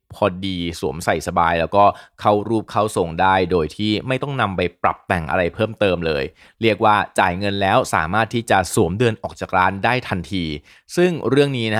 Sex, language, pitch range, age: male, Thai, 90-110 Hz, 20-39